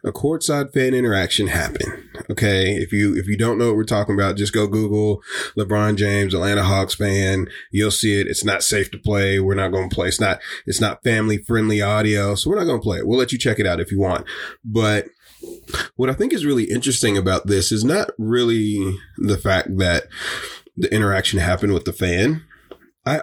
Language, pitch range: English, 100-125 Hz